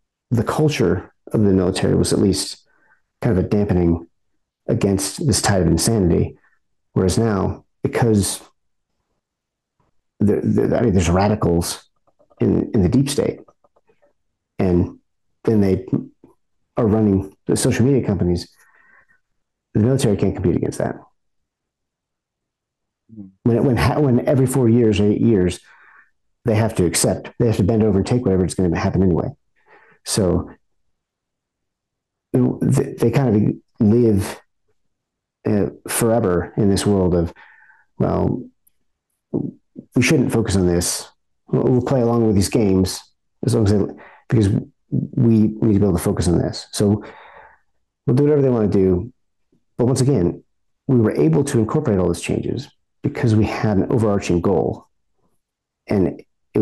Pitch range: 95-115 Hz